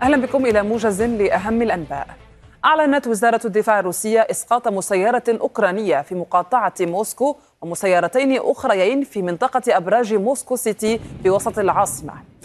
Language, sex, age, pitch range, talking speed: Arabic, female, 20-39, 190-225 Hz, 125 wpm